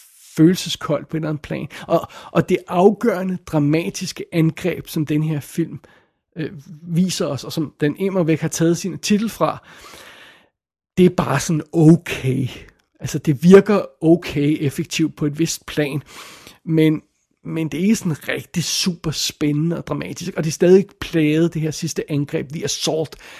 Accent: native